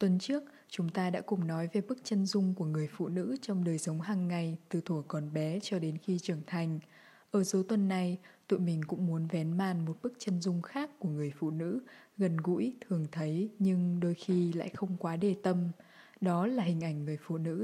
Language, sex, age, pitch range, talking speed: Vietnamese, female, 20-39, 170-210 Hz, 230 wpm